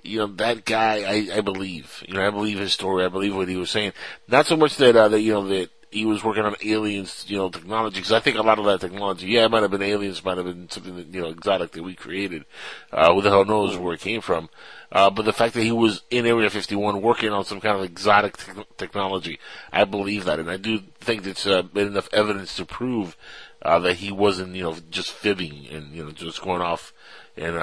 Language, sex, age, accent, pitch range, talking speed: English, male, 30-49, American, 90-105 Hz, 255 wpm